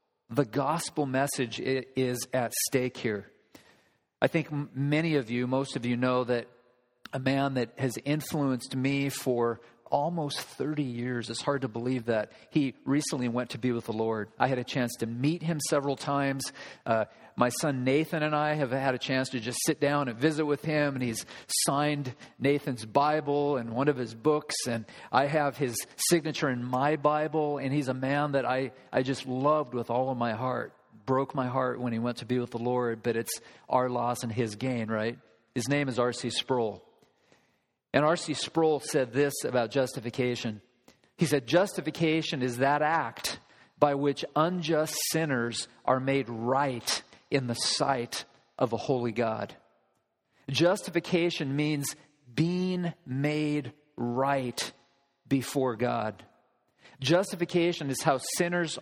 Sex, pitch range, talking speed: male, 125-150 Hz, 165 wpm